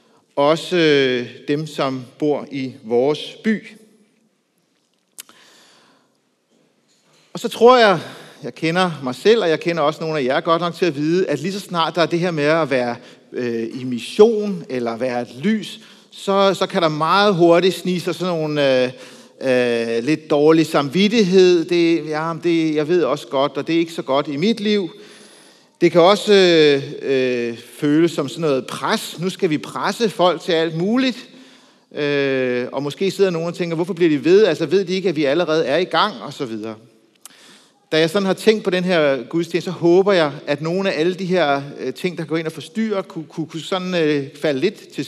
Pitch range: 145-190 Hz